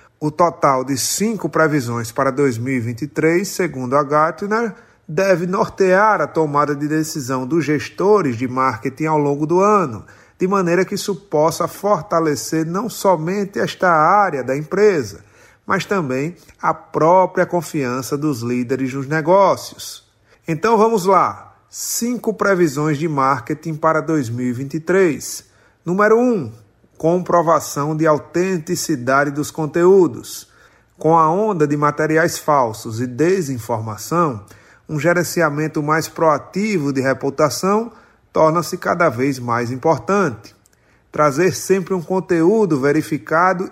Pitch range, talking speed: 140-185 Hz, 120 wpm